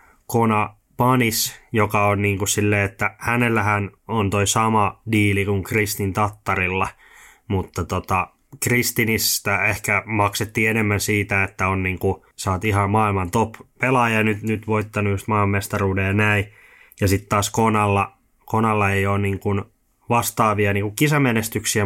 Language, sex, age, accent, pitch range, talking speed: Finnish, male, 20-39, native, 95-110 Hz, 135 wpm